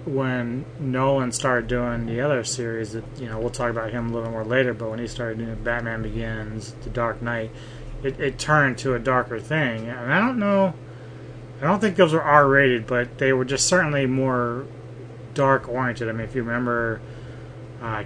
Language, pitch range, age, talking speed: English, 115-130 Hz, 30-49, 195 wpm